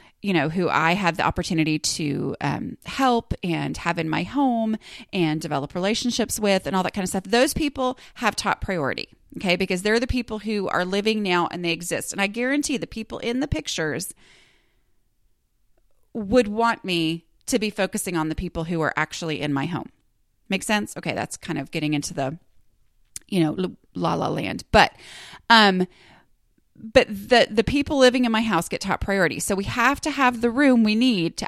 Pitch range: 170-230 Hz